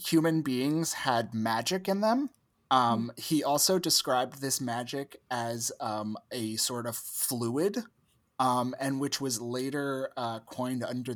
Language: English